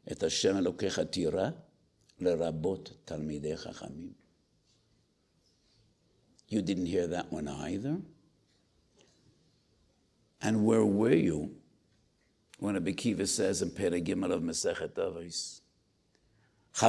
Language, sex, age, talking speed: English, male, 60-79, 70 wpm